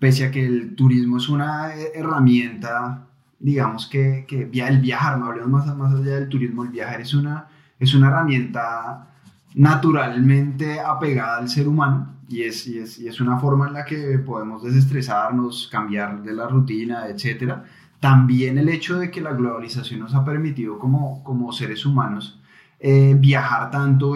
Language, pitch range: Spanish, 120-140 Hz